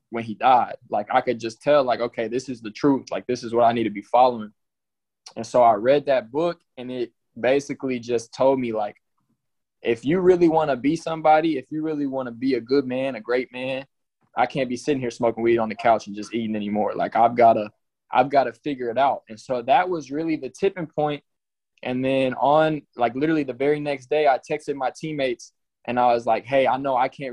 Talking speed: 240 wpm